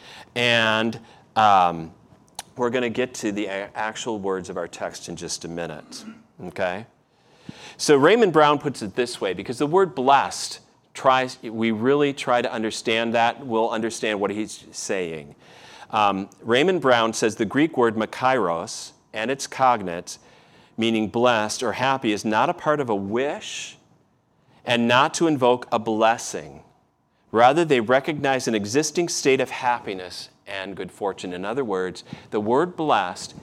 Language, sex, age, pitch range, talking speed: English, male, 40-59, 105-135 Hz, 155 wpm